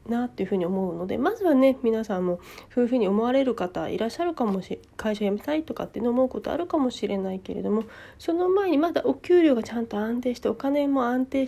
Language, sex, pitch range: Japanese, female, 200-280 Hz